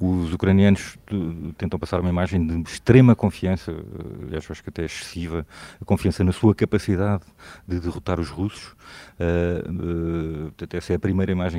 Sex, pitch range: male, 85-95 Hz